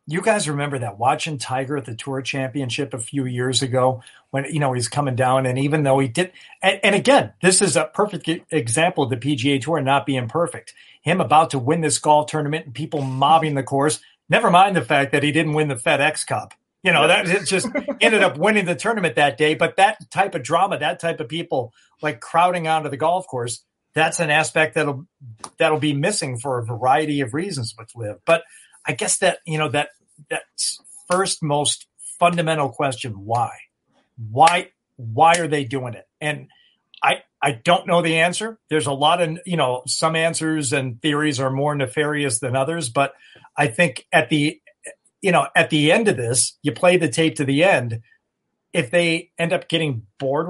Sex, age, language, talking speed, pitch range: male, 50-69, English, 200 wpm, 135-170 Hz